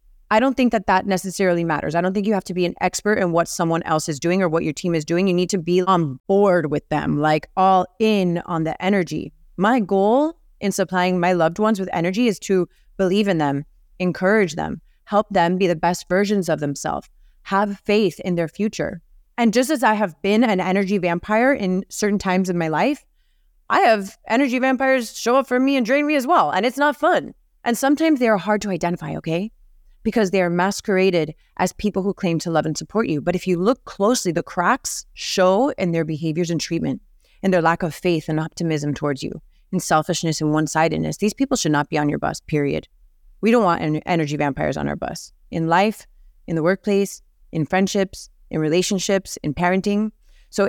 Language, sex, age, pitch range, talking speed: English, female, 20-39, 170-215 Hz, 215 wpm